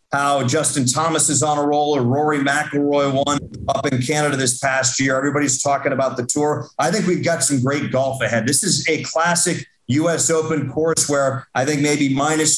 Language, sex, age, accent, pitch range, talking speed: English, male, 40-59, American, 135-160 Hz, 200 wpm